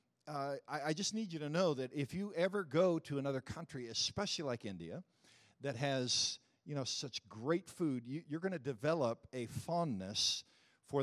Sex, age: male, 50-69